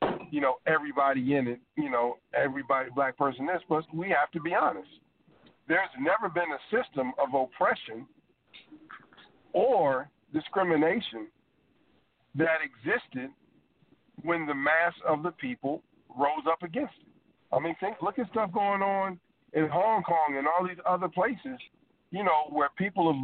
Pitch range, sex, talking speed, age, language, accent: 140-180 Hz, male, 150 wpm, 50-69, English, American